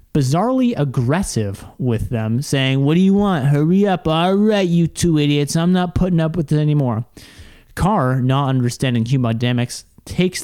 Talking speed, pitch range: 160 wpm, 125-155 Hz